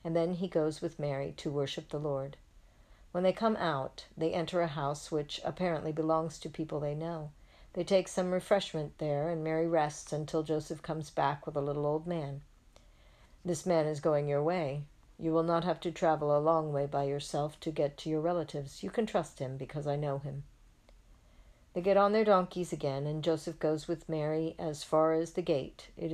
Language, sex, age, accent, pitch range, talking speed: English, female, 50-69, American, 145-170 Hz, 205 wpm